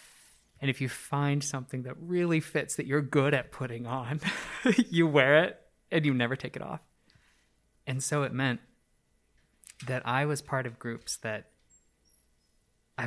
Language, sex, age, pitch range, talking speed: English, male, 20-39, 120-150 Hz, 160 wpm